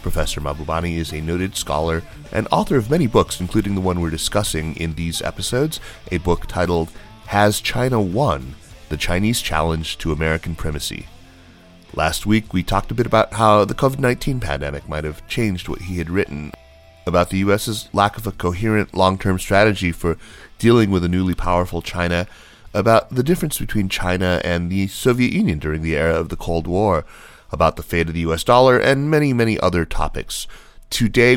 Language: English